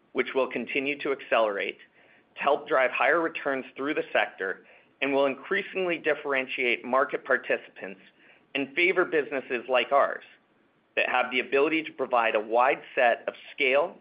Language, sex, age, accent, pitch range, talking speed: English, male, 40-59, American, 115-145 Hz, 150 wpm